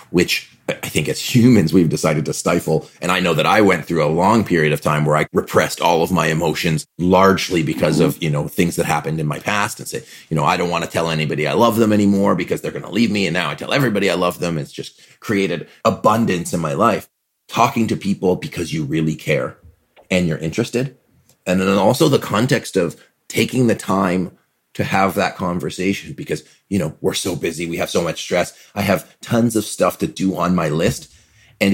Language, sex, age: English, male, 30-49